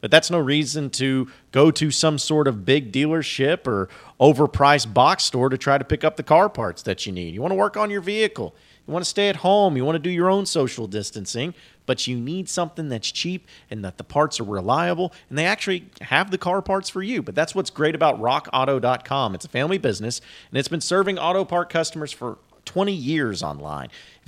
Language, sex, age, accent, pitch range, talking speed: English, male, 40-59, American, 120-165 Hz, 225 wpm